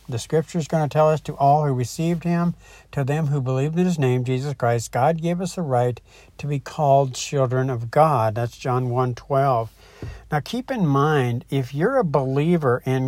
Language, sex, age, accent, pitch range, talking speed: English, male, 60-79, American, 125-160 Hz, 205 wpm